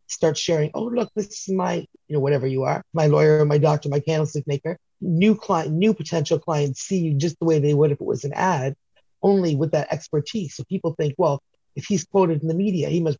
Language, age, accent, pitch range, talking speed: English, 30-49, American, 145-175 Hz, 235 wpm